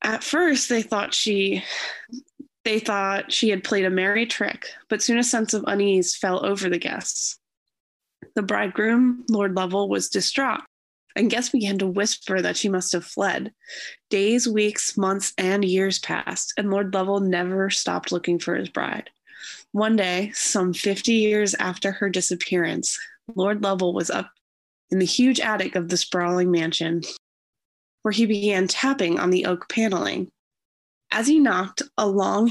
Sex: female